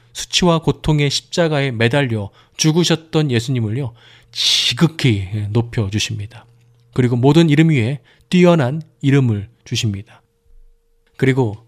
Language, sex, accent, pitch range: Korean, male, native, 110-140 Hz